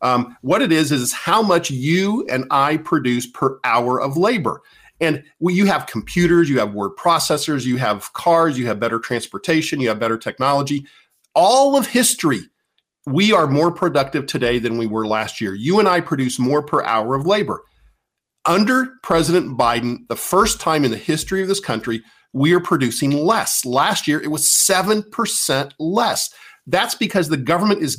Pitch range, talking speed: 130-185 Hz, 180 wpm